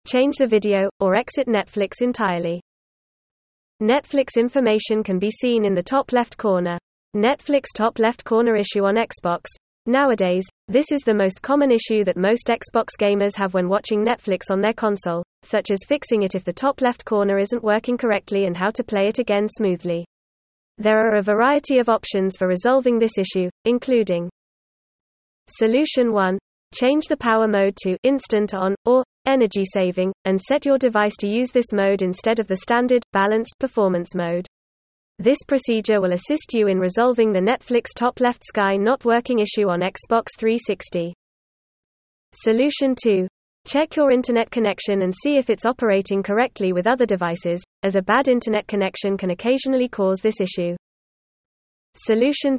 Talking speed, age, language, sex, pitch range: 165 wpm, 20-39, English, female, 190-245 Hz